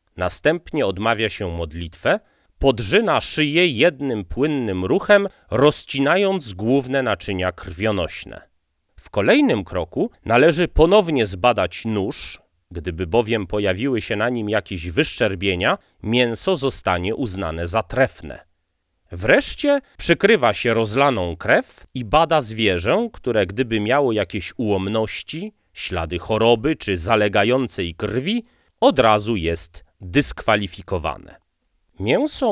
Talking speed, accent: 105 wpm, native